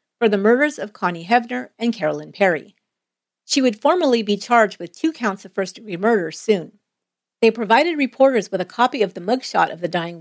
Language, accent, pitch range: English, American, 175-245 Hz